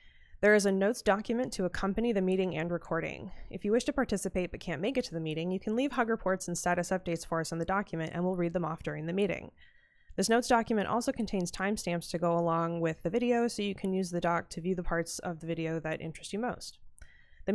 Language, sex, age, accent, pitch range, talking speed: English, female, 20-39, American, 165-205 Hz, 255 wpm